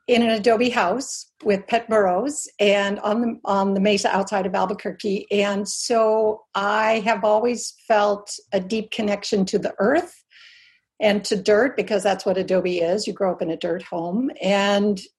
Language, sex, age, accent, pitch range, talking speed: English, female, 60-79, American, 195-235 Hz, 175 wpm